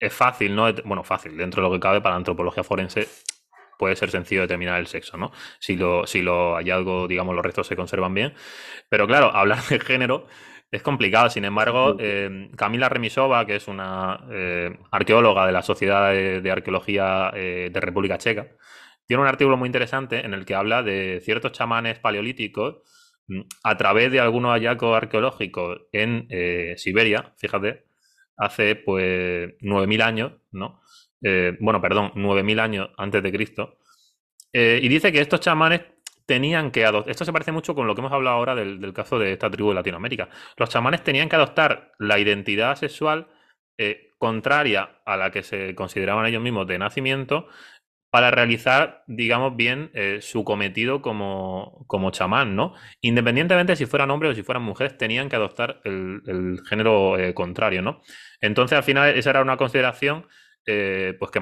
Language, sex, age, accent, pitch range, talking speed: Spanish, male, 20-39, Spanish, 95-130 Hz, 175 wpm